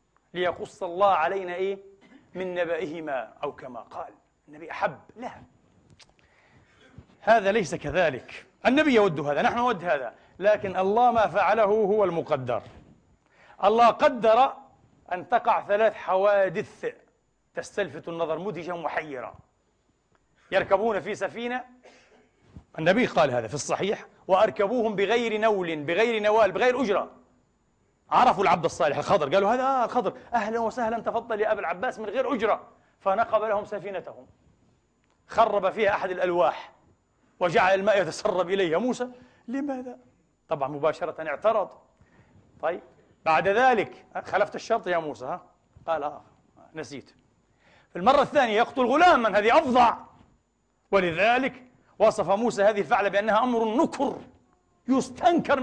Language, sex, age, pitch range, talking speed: English, male, 40-59, 185-240 Hz, 120 wpm